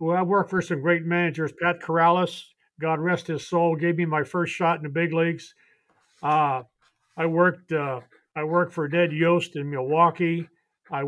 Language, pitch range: English, 155-180 Hz